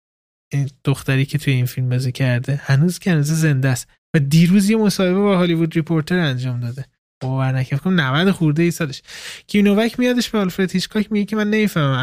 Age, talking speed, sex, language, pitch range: 20-39, 180 wpm, male, Persian, 140-185 Hz